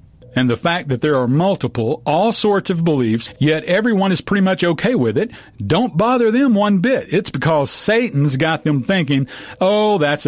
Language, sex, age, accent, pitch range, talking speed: English, male, 40-59, American, 140-190 Hz, 185 wpm